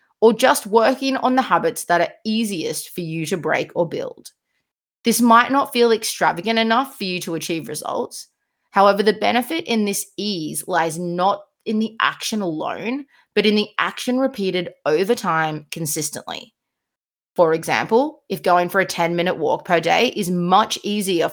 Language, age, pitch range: English, 20-39, 170-230 Hz